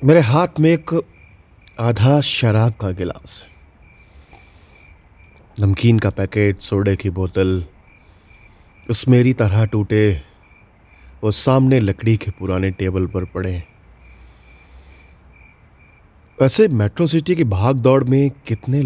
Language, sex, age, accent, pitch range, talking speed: Hindi, male, 30-49, native, 90-115 Hz, 105 wpm